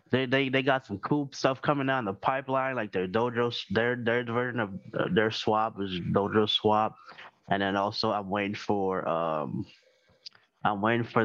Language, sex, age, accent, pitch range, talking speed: English, male, 20-39, American, 100-120 Hz, 175 wpm